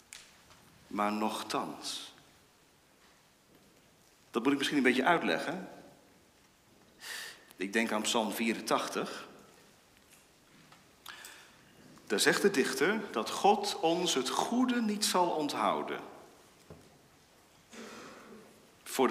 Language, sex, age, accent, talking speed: Dutch, male, 50-69, Dutch, 85 wpm